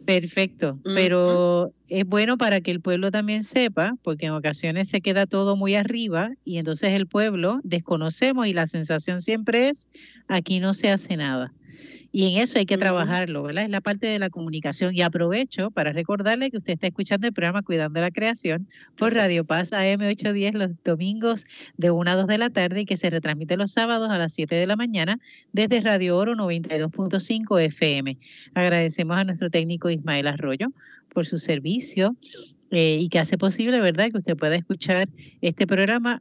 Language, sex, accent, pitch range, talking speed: Spanish, female, American, 165-205 Hz, 180 wpm